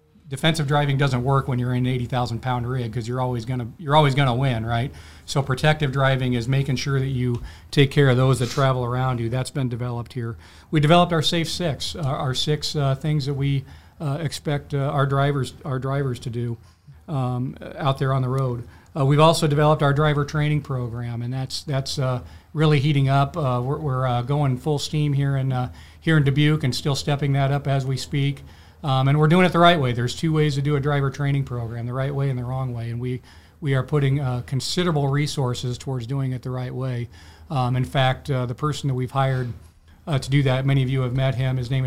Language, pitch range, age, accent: English, 125-145 Hz, 40-59, American